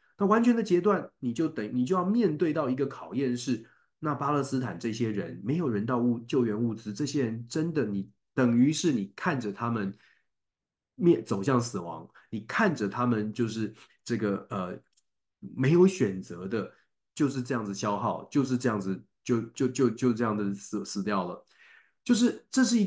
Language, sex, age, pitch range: Chinese, male, 30-49, 115-180 Hz